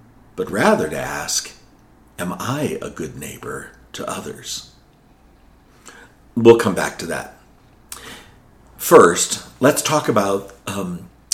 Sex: male